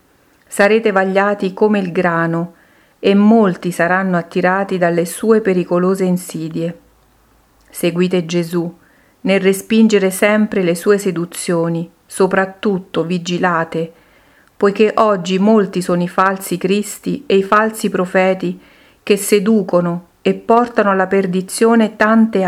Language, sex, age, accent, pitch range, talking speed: Italian, female, 50-69, native, 175-205 Hz, 110 wpm